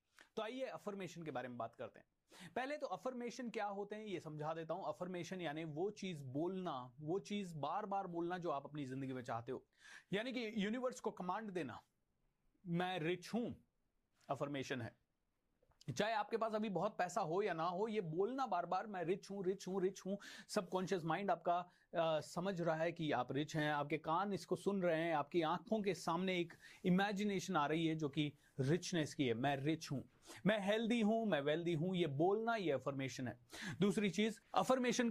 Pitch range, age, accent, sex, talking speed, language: 150-200 Hz, 30-49, native, male, 200 wpm, Hindi